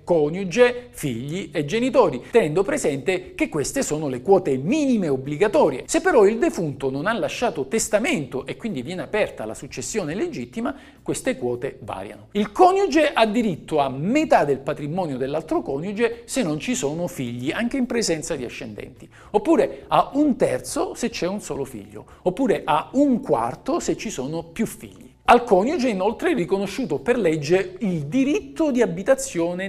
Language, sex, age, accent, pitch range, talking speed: Italian, male, 50-69, native, 150-245 Hz, 160 wpm